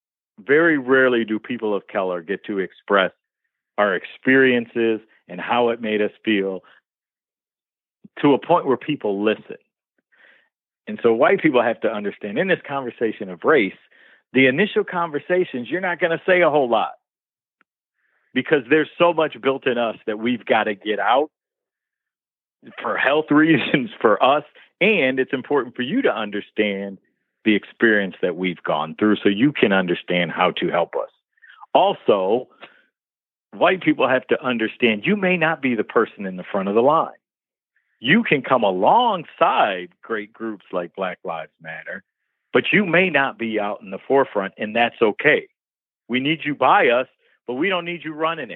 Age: 50-69